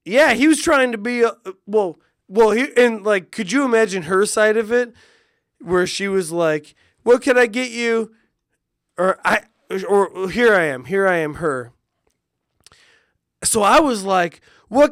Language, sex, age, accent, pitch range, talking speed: English, male, 20-39, American, 220-300 Hz, 175 wpm